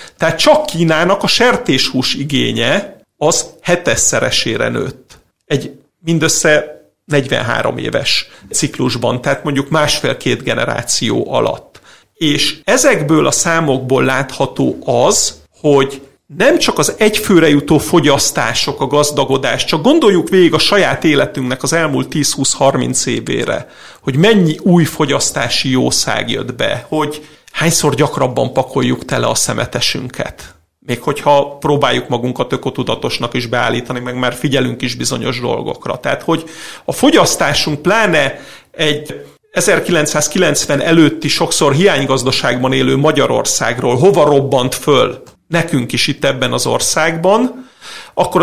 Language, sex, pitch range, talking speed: Hungarian, male, 130-165 Hz, 115 wpm